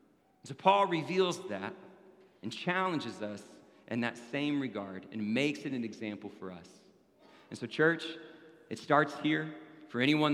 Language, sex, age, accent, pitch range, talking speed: English, male, 40-59, American, 130-170 Hz, 155 wpm